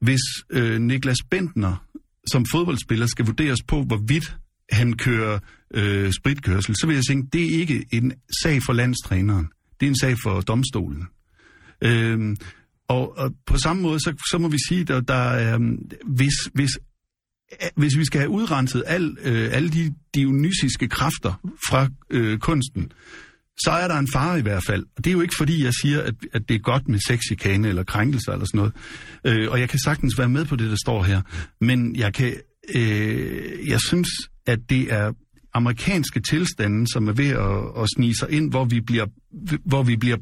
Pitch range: 110-145 Hz